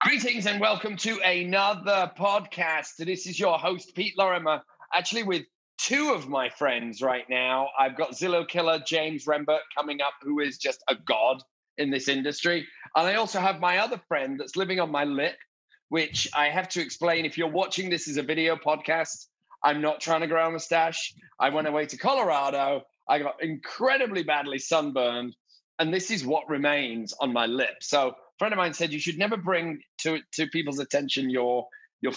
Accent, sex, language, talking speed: British, male, English, 190 wpm